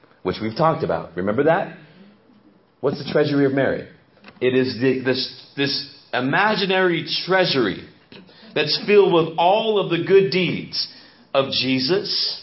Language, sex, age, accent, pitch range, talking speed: English, male, 40-59, American, 140-195 Hz, 135 wpm